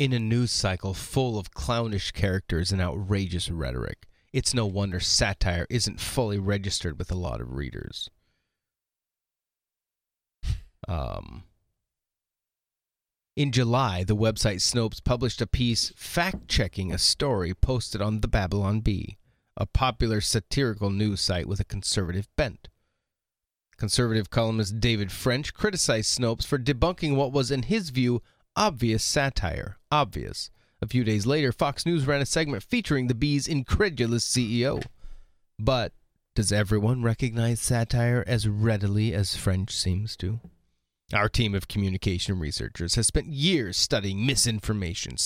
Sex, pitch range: male, 95-125 Hz